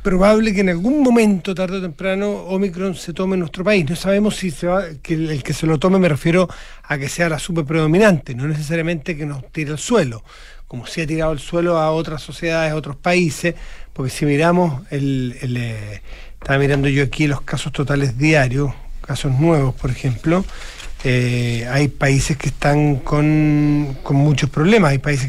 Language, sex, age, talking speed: Spanish, male, 40-59, 195 wpm